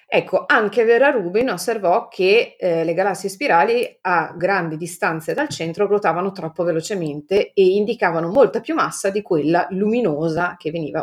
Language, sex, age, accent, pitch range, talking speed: Italian, female, 30-49, native, 160-205 Hz, 150 wpm